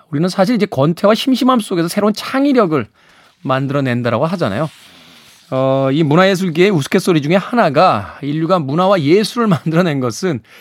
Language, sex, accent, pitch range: Korean, male, native, 135-195 Hz